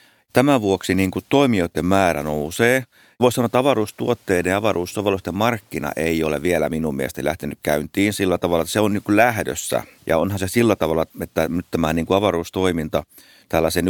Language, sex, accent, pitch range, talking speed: Finnish, male, native, 85-100 Hz, 170 wpm